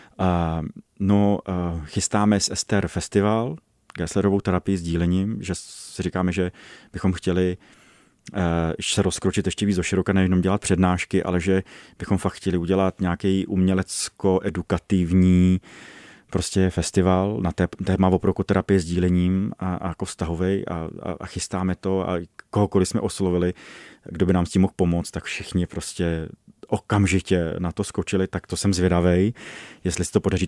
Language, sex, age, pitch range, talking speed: Czech, male, 30-49, 90-100 Hz, 155 wpm